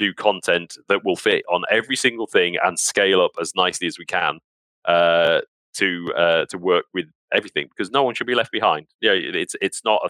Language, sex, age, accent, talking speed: English, male, 30-49, British, 220 wpm